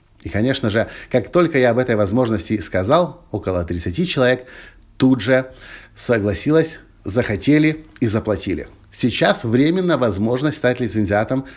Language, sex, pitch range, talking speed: Russian, male, 105-135 Hz, 125 wpm